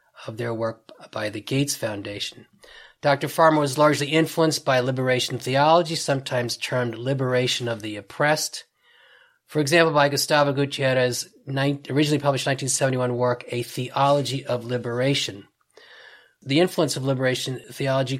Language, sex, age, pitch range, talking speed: English, male, 30-49, 125-145 Hz, 130 wpm